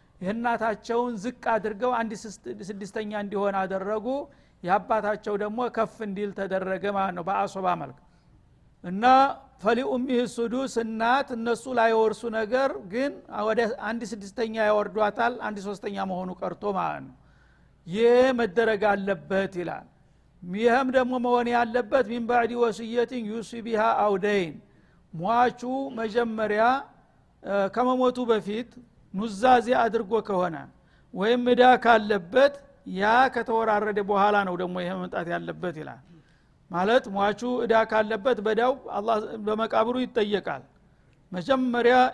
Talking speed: 105 wpm